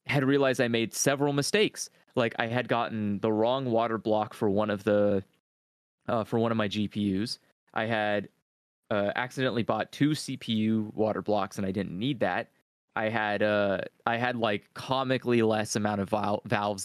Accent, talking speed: American, 175 wpm